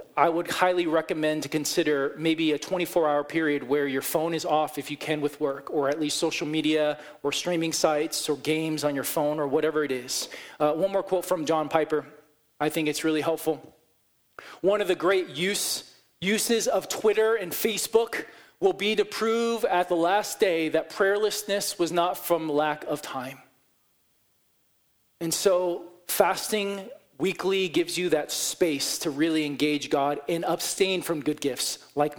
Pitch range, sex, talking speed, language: 150-230 Hz, male, 170 wpm, English